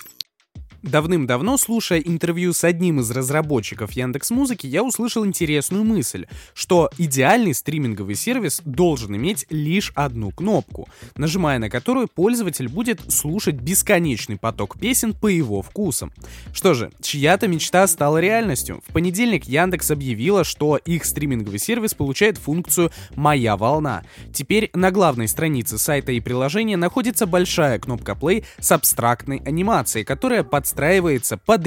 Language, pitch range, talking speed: Russian, 130-190 Hz, 130 wpm